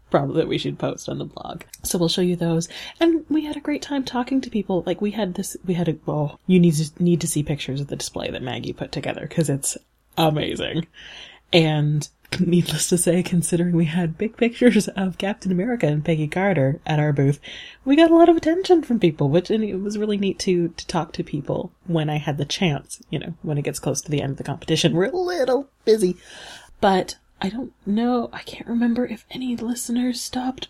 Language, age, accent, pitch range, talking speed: English, 30-49, American, 155-230 Hz, 225 wpm